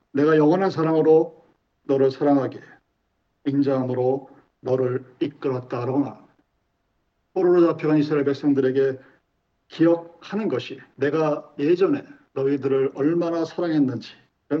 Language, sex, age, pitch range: Korean, male, 50-69, 140-180 Hz